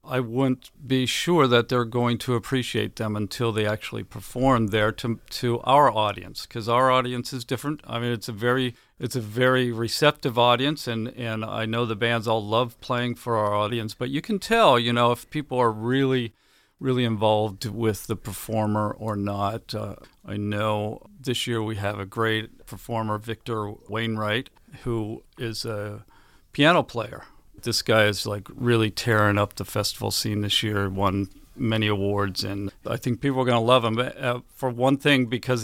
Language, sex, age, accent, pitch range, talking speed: English, male, 50-69, American, 105-125 Hz, 185 wpm